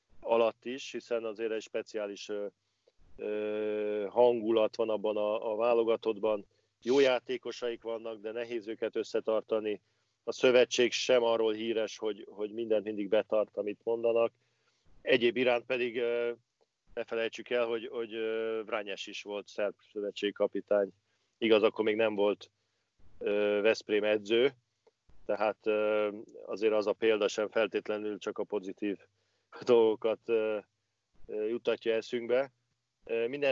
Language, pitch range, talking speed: Hungarian, 105-120 Hz, 125 wpm